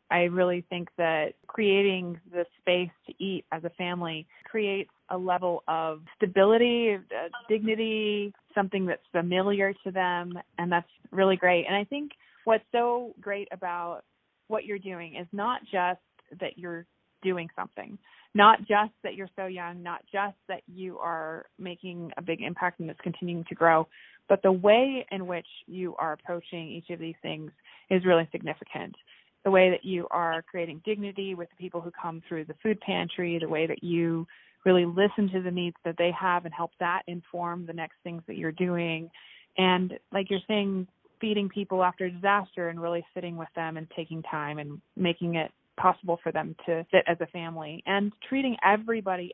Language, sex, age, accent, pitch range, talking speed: English, female, 20-39, American, 170-195 Hz, 180 wpm